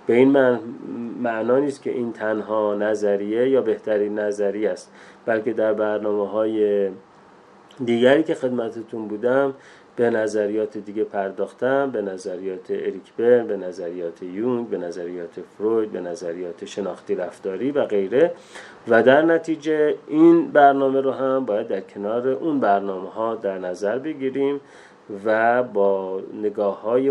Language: Persian